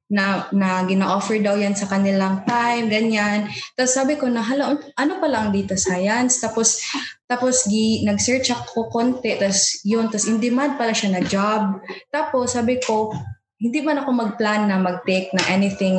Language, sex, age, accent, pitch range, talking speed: English, female, 20-39, Filipino, 190-235 Hz, 175 wpm